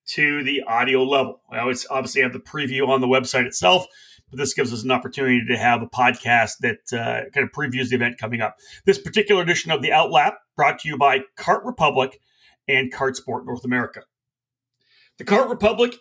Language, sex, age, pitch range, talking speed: English, male, 40-59, 130-205 Hz, 200 wpm